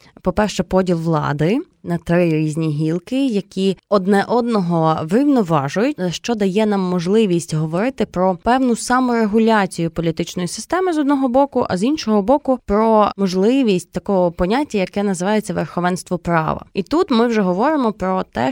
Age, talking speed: 20-39, 140 wpm